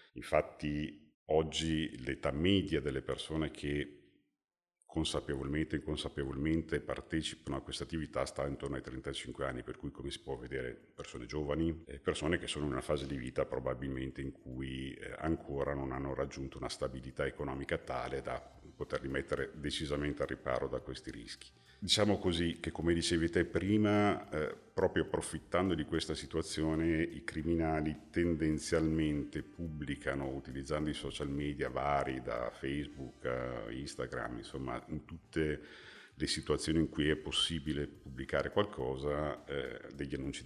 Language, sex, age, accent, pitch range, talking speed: Italian, male, 50-69, native, 70-85 Hz, 140 wpm